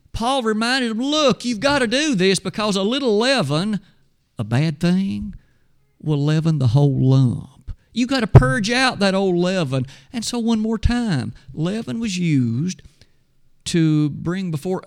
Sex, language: male, English